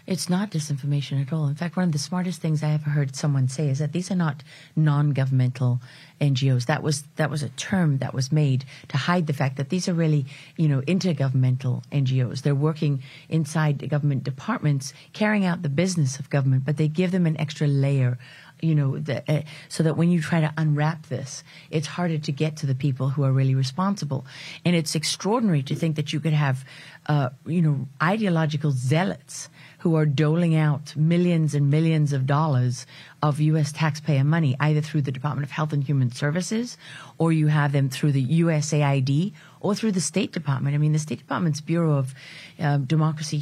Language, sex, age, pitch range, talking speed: English, female, 40-59, 140-160 Hz, 200 wpm